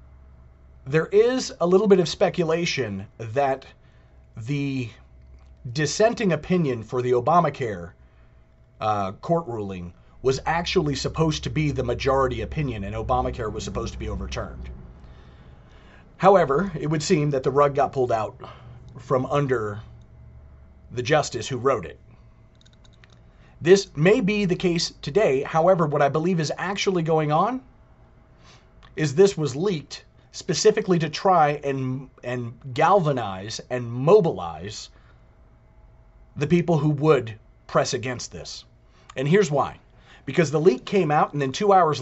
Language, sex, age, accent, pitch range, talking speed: English, male, 30-49, American, 110-175 Hz, 135 wpm